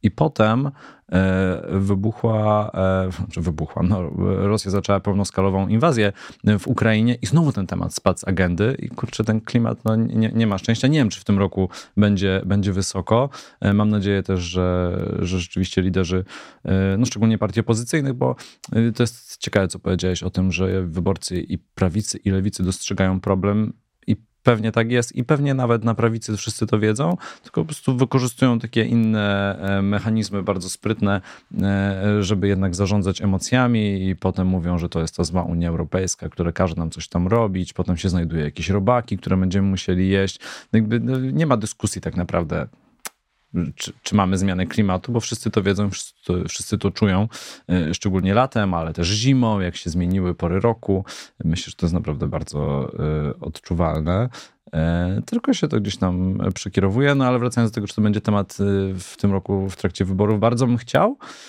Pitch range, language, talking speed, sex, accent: 95-115 Hz, Polish, 170 wpm, male, native